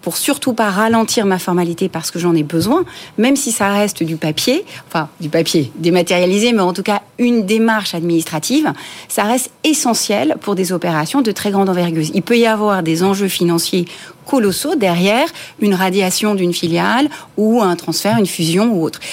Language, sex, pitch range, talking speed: French, female, 175-225 Hz, 180 wpm